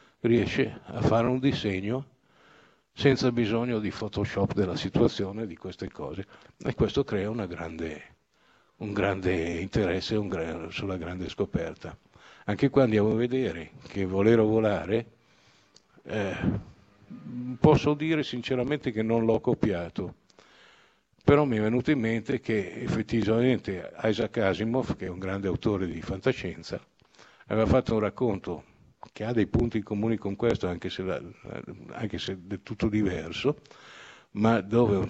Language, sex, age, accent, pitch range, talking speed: Italian, male, 60-79, native, 100-125 Hz, 140 wpm